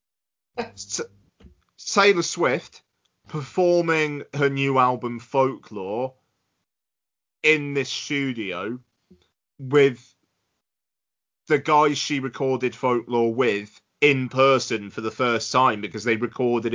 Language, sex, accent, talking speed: English, male, British, 95 wpm